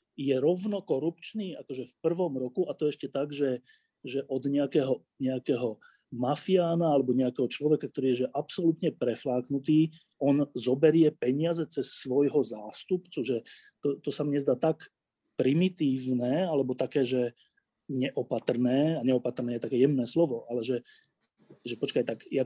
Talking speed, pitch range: 145 wpm, 130-165 Hz